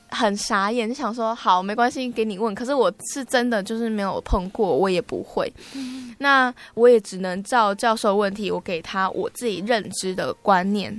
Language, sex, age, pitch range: Chinese, female, 20-39, 195-245 Hz